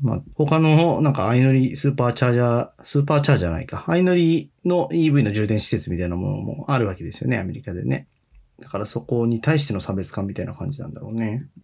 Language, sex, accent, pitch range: Japanese, male, native, 115-165 Hz